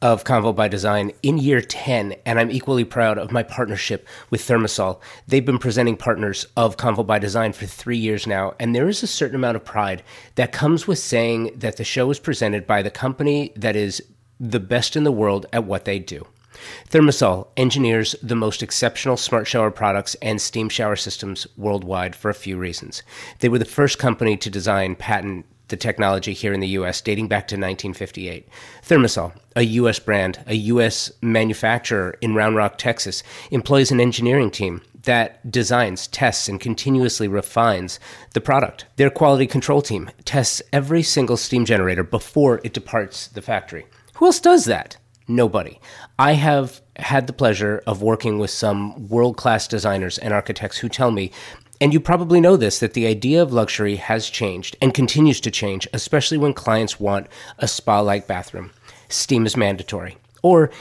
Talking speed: 175 wpm